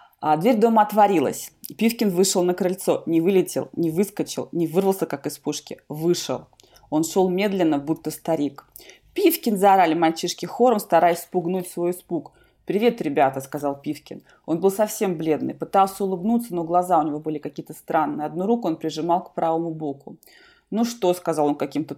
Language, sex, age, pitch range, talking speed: Russian, female, 20-39, 160-215 Hz, 160 wpm